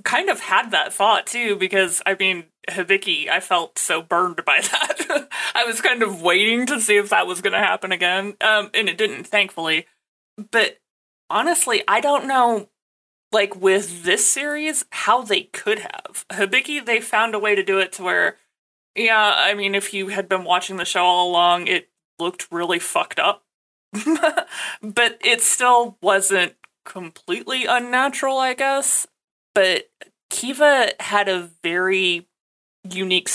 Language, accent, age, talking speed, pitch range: English, American, 20-39, 160 wpm, 180-240 Hz